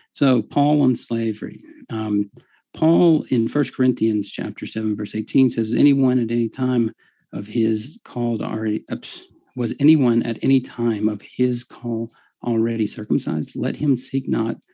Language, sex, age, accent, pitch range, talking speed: English, male, 50-69, American, 115-140 Hz, 145 wpm